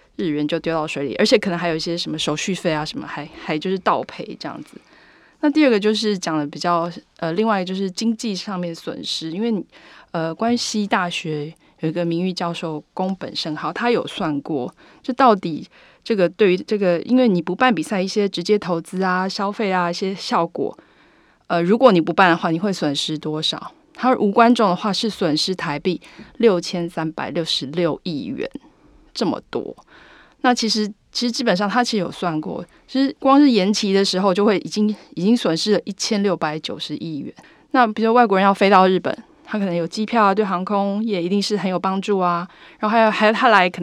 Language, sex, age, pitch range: Chinese, female, 20-39, 170-220 Hz